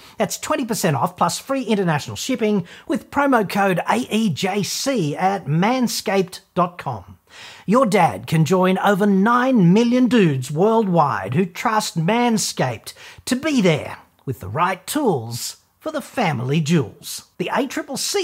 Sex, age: male, 40-59